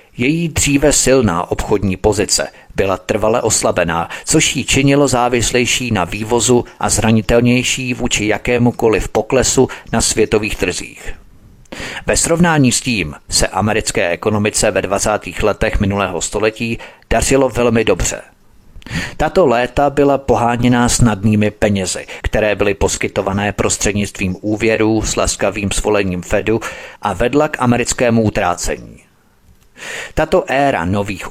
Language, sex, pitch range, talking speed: Czech, male, 100-125 Hz, 115 wpm